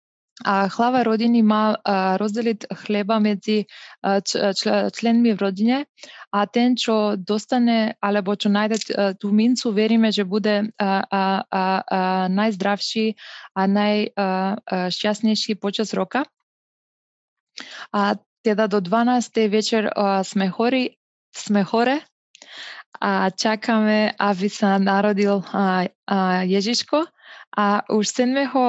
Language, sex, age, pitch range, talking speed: Slovak, female, 20-39, 195-225 Hz, 100 wpm